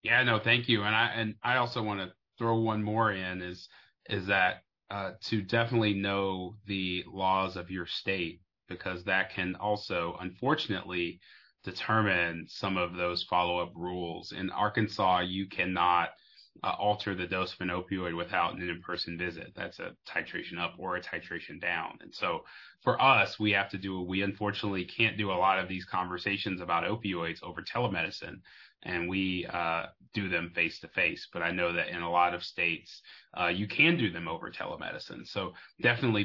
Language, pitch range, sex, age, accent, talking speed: English, 90-110 Hz, male, 30-49, American, 180 wpm